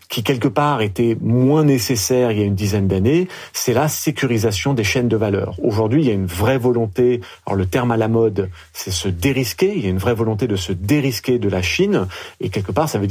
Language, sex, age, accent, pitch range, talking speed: French, male, 40-59, French, 105-135 Hz, 240 wpm